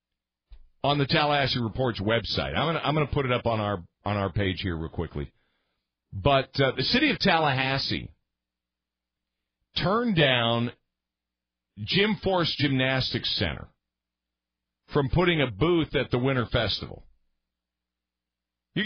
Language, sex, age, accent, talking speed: English, male, 50-69, American, 135 wpm